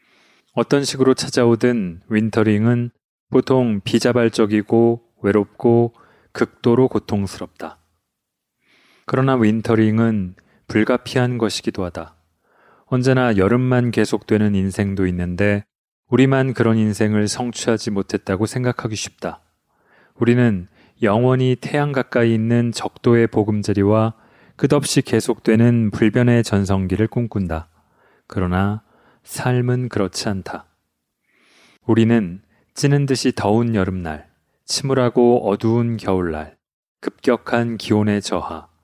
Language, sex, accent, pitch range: Korean, male, native, 105-125 Hz